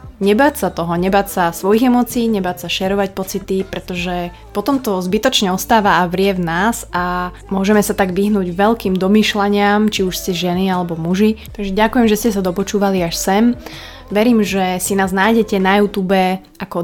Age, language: 20-39, Slovak